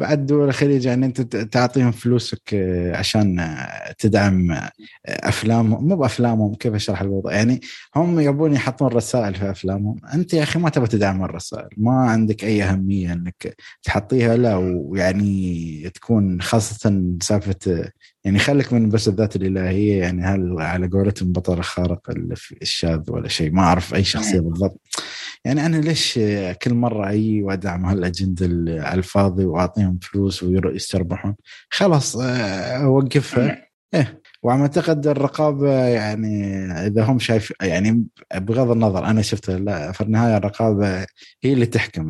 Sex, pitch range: male, 95-120 Hz